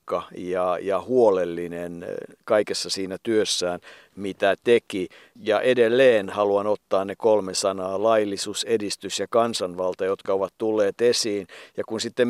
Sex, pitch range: male, 100-115 Hz